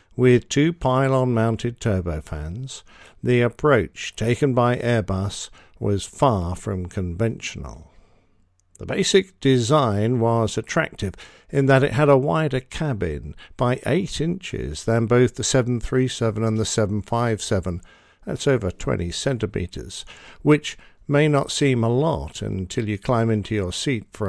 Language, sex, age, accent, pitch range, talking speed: English, male, 50-69, British, 100-135 Hz, 130 wpm